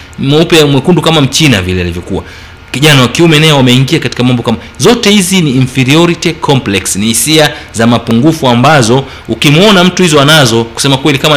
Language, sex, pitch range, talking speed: Swahili, male, 115-155 Hz, 160 wpm